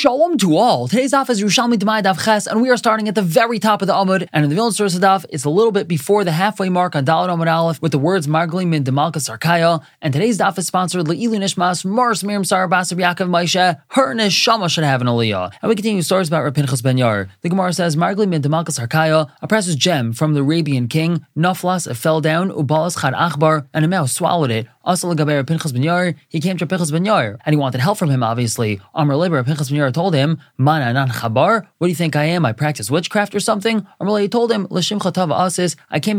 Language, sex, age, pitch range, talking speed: English, male, 20-39, 145-185 Hz, 215 wpm